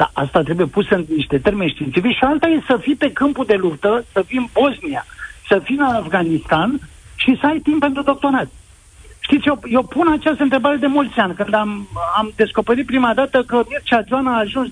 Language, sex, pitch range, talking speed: Romanian, male, 205-280 Hz, 210 wpm